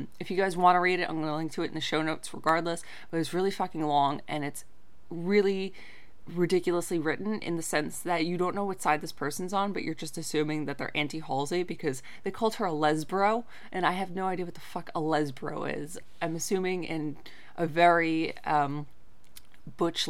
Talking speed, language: 210 wpm, English